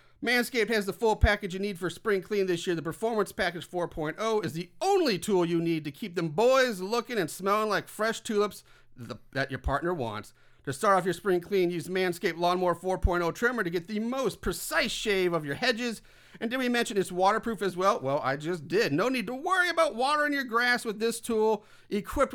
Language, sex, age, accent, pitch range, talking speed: English, male, 40-59, American, 170-220 Hz, 215 wpm